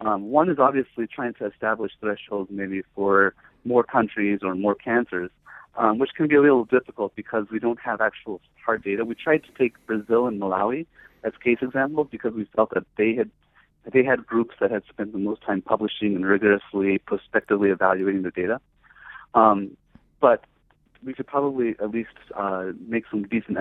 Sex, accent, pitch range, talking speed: male, American, 100-120 Hz, 185 wpm